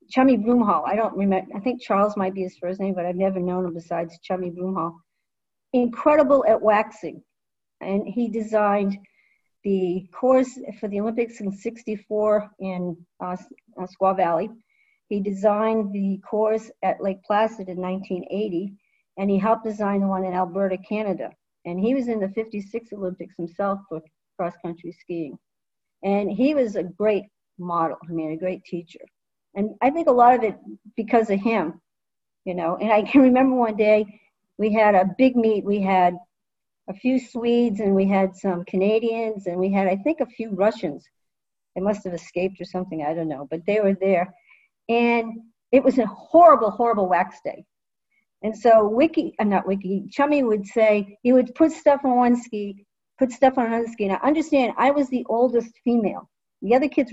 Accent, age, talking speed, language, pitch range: American, 50-69, 180 wpm, English, 185-235 Hz